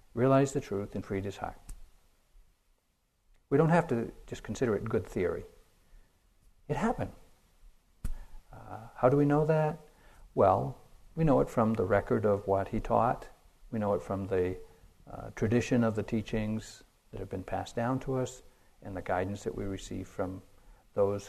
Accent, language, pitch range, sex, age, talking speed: American, English, 95-135 Hz, male, 60-79, 170 wpm